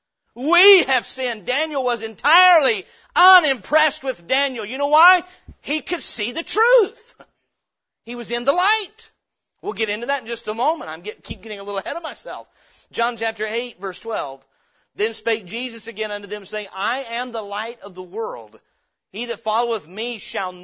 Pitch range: 195-255 Hz